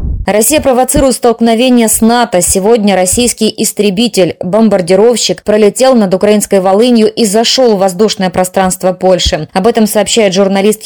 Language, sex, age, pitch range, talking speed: Czech, female, 20-39, 185-225 Hz, 120 wpm